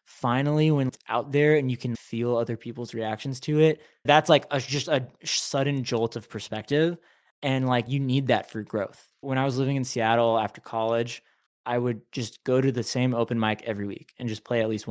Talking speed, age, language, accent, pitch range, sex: 215 wpm, 20-39, English, American, 110-140 Hz, male